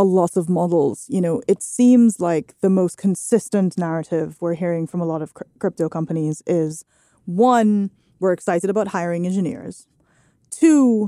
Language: English